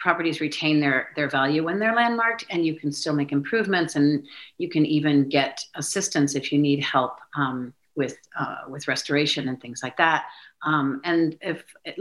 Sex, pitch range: female, 140-165 Hz